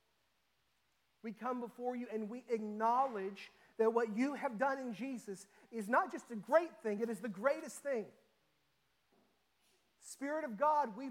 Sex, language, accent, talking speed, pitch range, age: male, English, American, 155 wpm, 210-250 Hz, 40-59